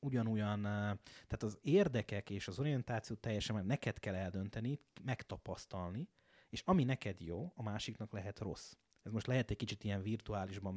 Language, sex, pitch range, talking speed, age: Hungarian, male, 95-120 Hz, 150 wpm, 30-49